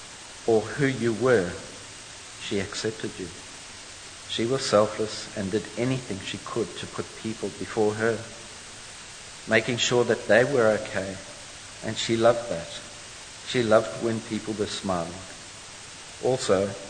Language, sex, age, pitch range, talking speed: English, male, 60-79, 95-115 Hz, 130 wpm